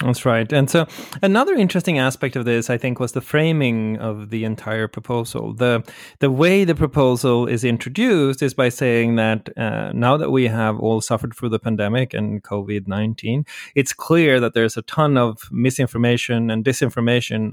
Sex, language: male, English